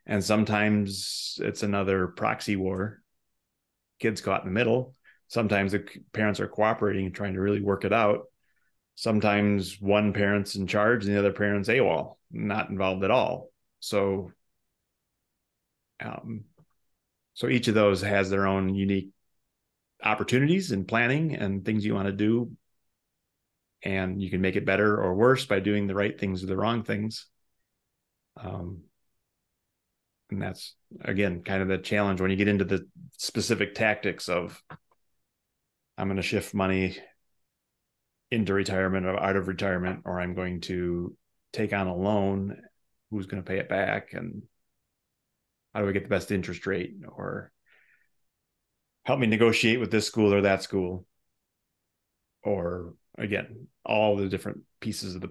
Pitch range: 95-105 Hz